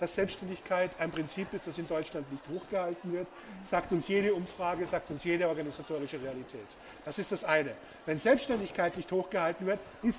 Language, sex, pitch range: German, male, 165-205 Hz